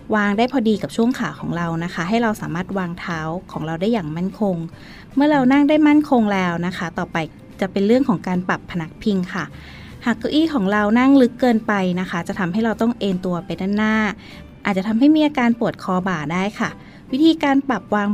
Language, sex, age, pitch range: Thai, female, 20-39, 180-240 Hz